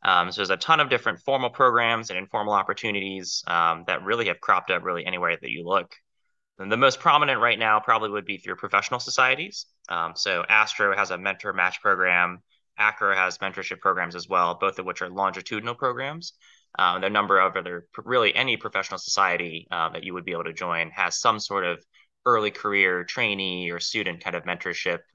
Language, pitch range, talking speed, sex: English, 90-105 Hz, 200 wpm, male